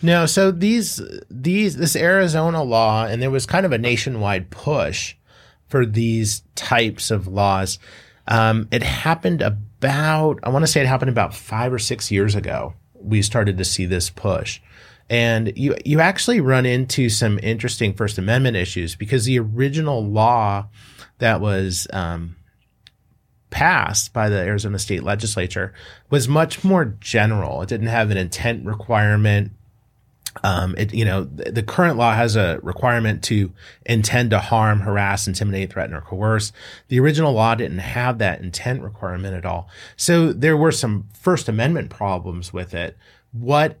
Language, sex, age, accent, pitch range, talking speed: English, male, 30-49, American, 100-125 Hz, 160 wpm